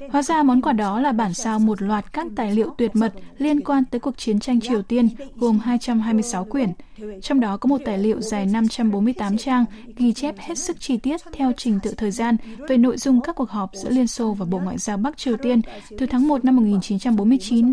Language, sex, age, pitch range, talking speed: Vietnamese, female, 20-39, 215-260 Hz, 225 wpm